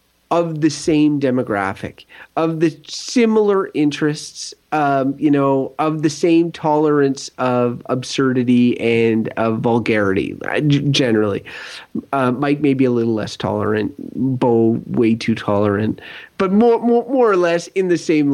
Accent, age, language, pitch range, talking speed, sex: American, 30-49, English, 130-175 Hz, 135 wpm, male